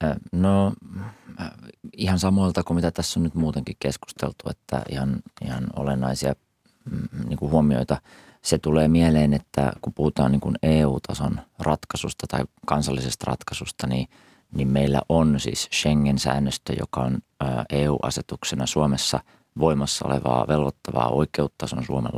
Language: Finnish